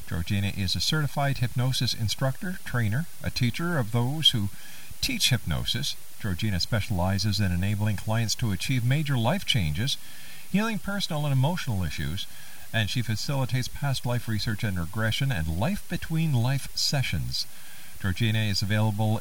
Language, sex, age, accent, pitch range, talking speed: English, male, 50-69, American, 95-135 Hz, 135 wpm